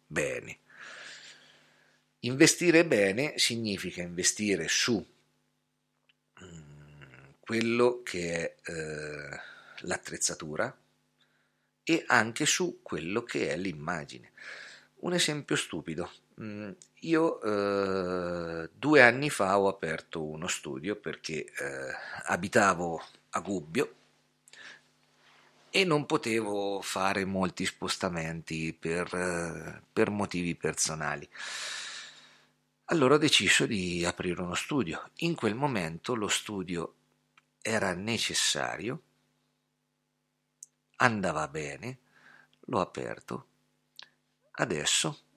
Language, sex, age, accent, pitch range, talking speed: Italian, male, 50-69, native, 85-125 Hz, 85 wpm